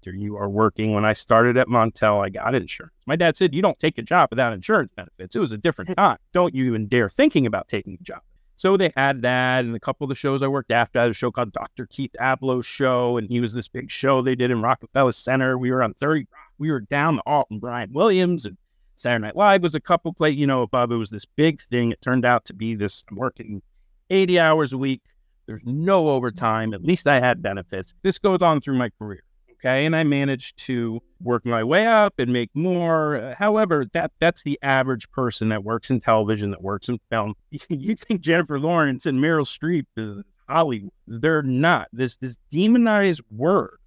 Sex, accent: male, American